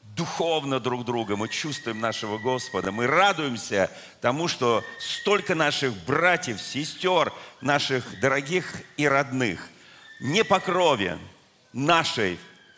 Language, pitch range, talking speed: Russian, 120-160 Hz, 110 wpm